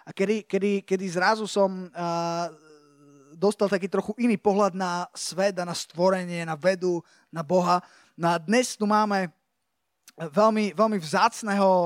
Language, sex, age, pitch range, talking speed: Slovak, male, 20-39, 175-205 Hz, 130 wpm